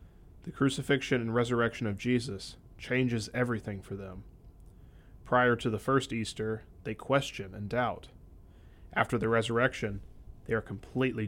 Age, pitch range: 30-49, 95-120 Hz